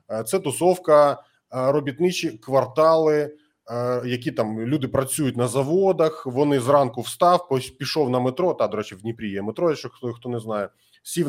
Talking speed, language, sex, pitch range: 155 wpm, Ukrainian, male, 130-185 Hz